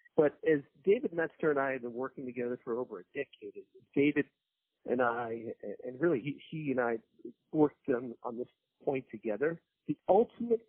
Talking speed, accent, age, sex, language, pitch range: 180 wpm, American, 50-69, male, English, 125-175 Hz